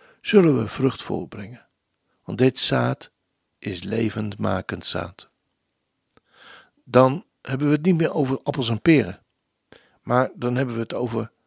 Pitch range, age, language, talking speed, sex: 105-150 Hz, 60-79, Dutch, 135 wpm, male